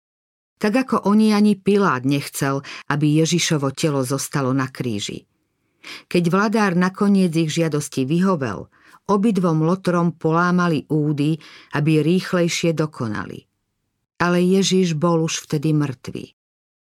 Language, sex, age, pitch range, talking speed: Slovak, female, 50-69, 145-180 Hz, 110 wpm